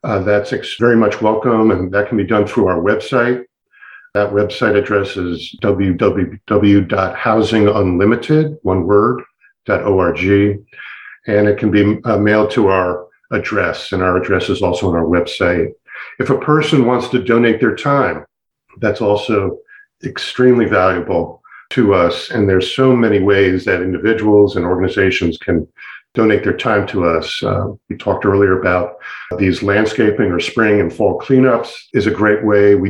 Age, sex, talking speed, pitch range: 50-69, male, 160 wpm, 95-115 Hz